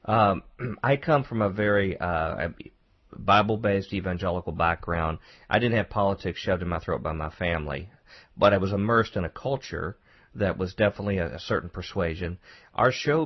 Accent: American